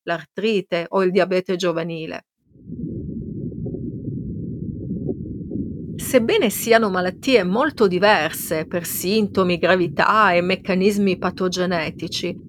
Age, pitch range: 40-59, 180-260 Hz